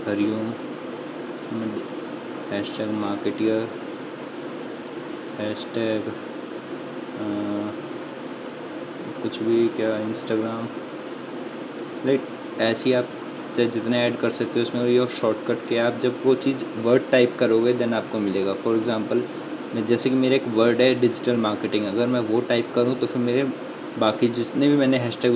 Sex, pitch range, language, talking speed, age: male, 110-120 Hz, Hindi, 135 wpm, 20-39